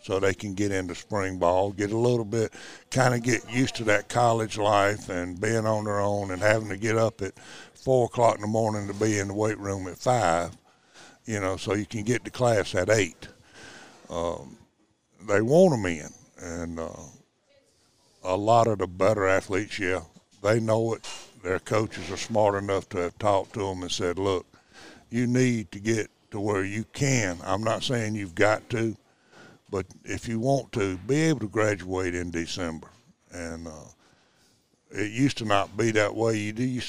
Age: 60-79